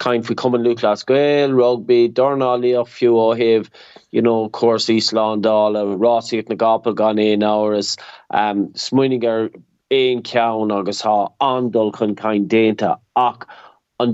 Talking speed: 150 wpm